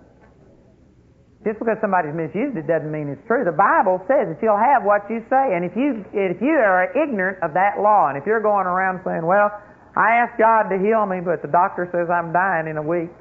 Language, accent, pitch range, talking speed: English, American, 175-225 Hz, 225 wpm